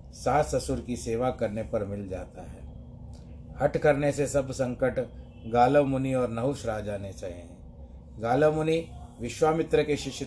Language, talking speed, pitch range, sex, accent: Hindi, 150 wpm, 100-130 Hz, male, native